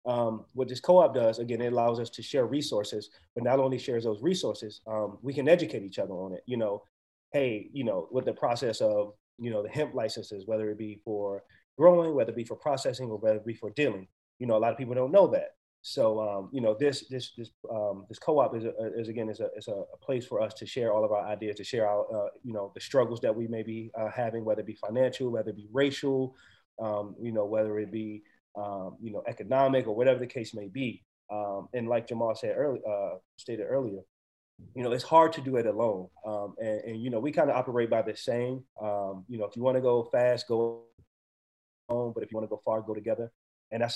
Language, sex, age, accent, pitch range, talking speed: English, male, 30-49, American, 105-125 Hz, 245 wpm